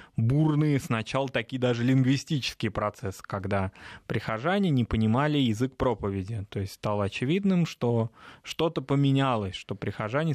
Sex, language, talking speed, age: male, Russian, 120 wpm, 20-39